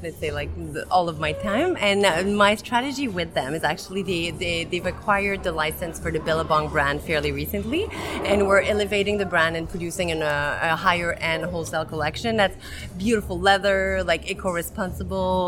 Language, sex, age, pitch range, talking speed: French, female, 30-49, 155-190 Hz, 175 wpm